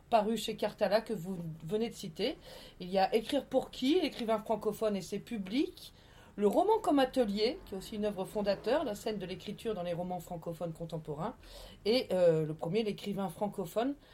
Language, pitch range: French, 195-255 Hz